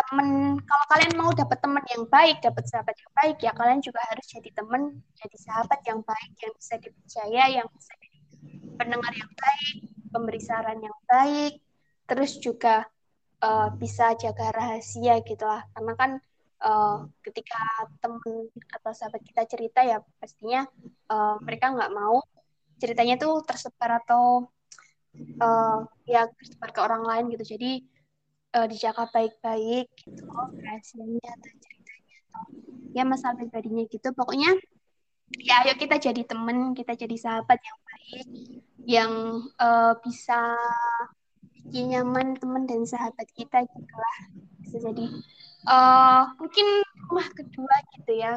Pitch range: 225-260 Hz